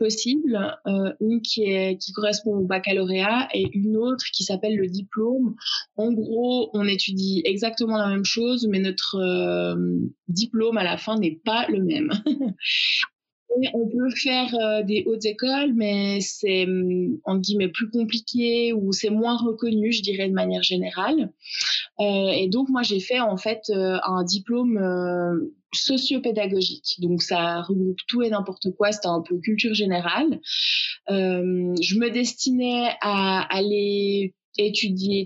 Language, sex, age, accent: French, female, 20-39, French